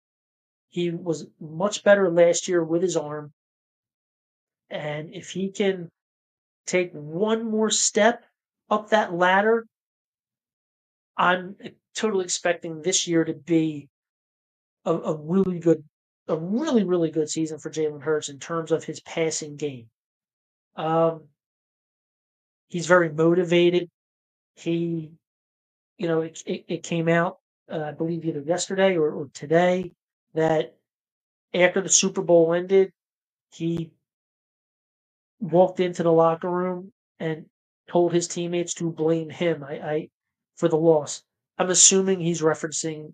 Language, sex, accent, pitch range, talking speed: English, male, American, 155-180 Hz, 130 wpm